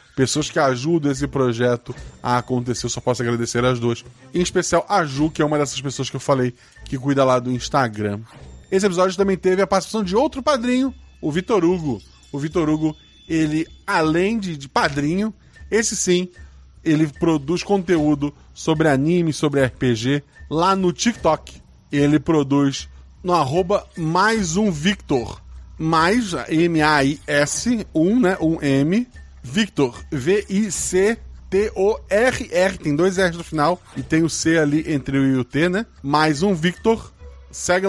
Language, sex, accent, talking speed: Portuguese, male, Brazilian, 150 wpm